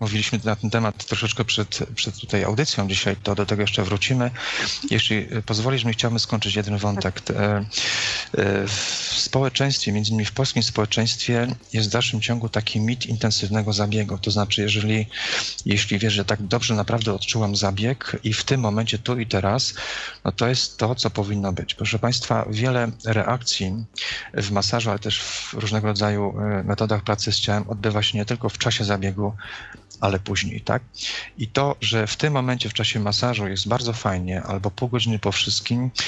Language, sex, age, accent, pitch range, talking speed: Polish, male, 40-59, native, 105-120 Hz, 170 wpm